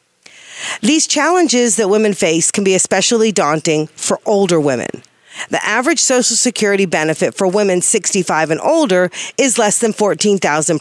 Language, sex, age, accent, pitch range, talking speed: English, female, 40-59, American, 175-225 Hz, 145 wpm